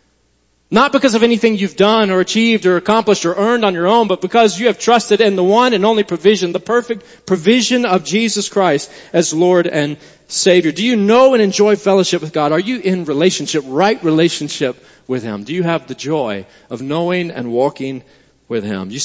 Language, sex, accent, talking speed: English, male, American, 200 wpm